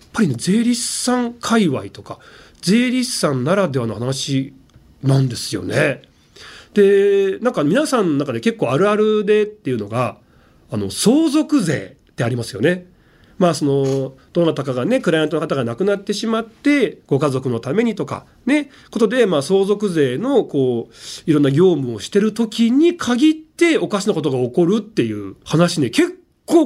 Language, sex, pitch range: Japanese, male, 130-210 Hz